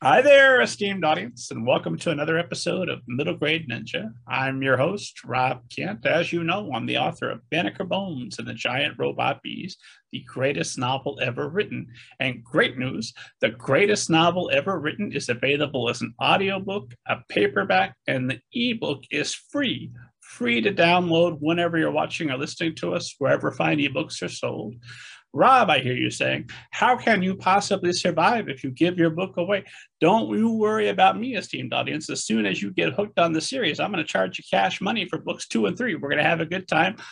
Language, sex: English, male